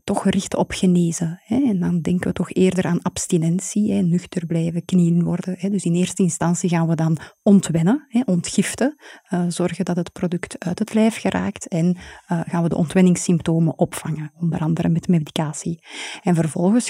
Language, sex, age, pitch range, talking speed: Dutch, female, 30-49, 170-195 Hz, 160 wpm